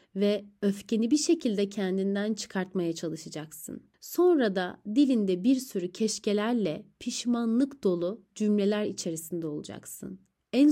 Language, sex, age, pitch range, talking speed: Turkish, female, 30-49, 185-240 Hz, 105 wpm